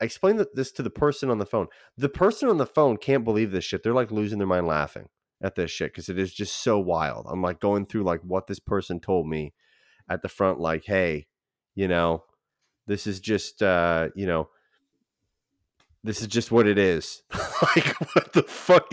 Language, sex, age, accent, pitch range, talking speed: English, male, 30-49, American, 95-125 Hz, 205 wpm